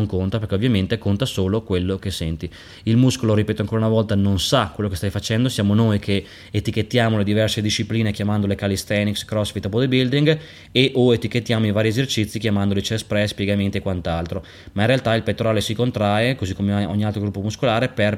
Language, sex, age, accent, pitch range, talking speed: Italian, male, 20-39, native, 100-115 Hz, 190 wpm